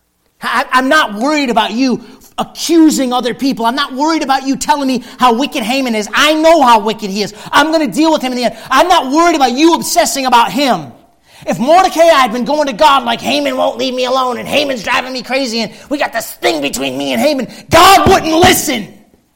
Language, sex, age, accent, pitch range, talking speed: English, male, 40-59, American, 155-255 Hz, 225 wpm